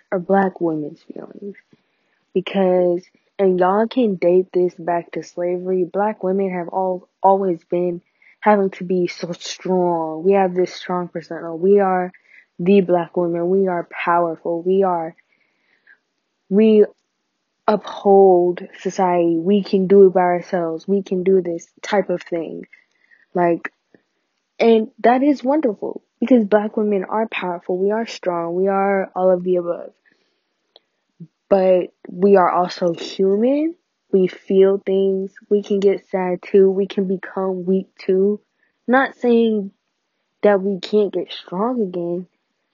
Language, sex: English, female